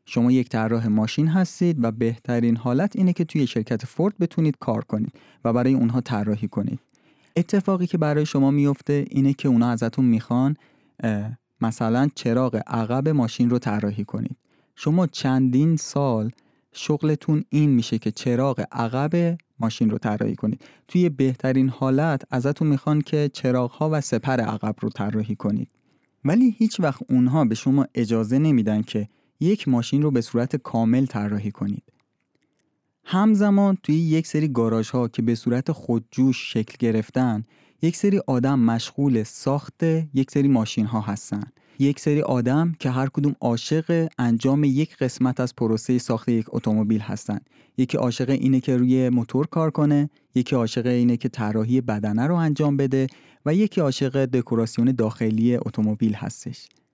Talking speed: 150 wpm